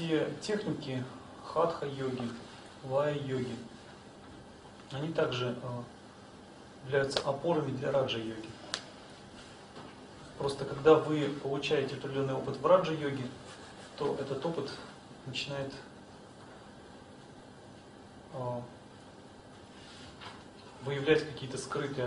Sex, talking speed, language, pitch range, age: male, 75 wpm, English, 120-145 Hz, 30-49